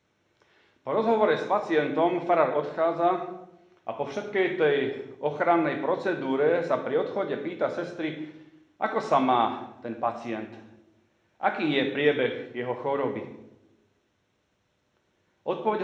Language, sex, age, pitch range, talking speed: Slovak, male, 40-59, 125-195 Hz, 105 wpm